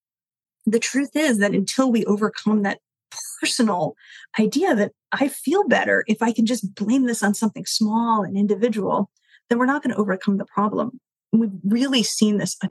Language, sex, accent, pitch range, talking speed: English, female, American, 200-245 Hz, 180 wpm